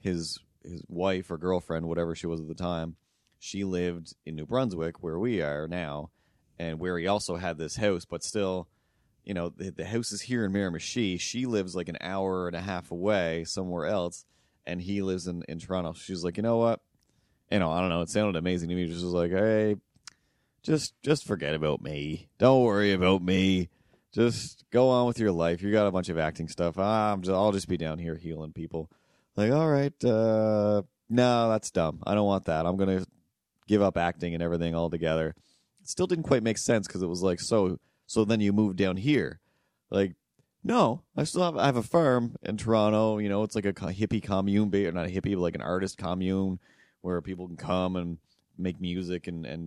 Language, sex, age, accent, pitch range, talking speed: English, male, 30-49, American, 85-105 Hz, 215 wpm